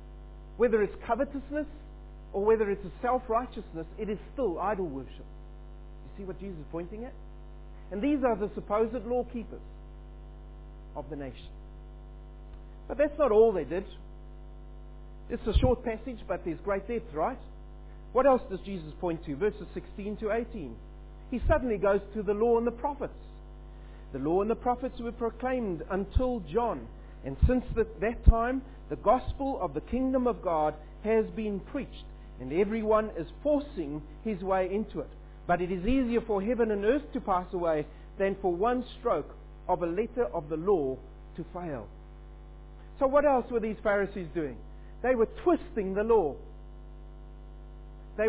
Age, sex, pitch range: 50-69, male, 165-240 Hz